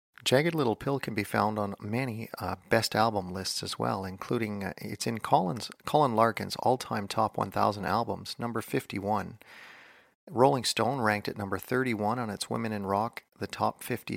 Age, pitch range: 40-59, 95-115 Hz